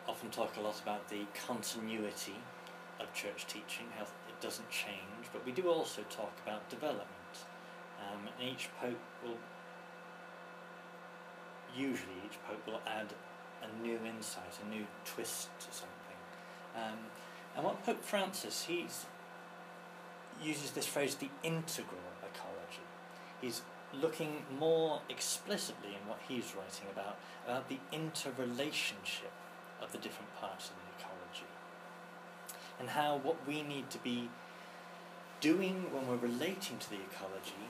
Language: English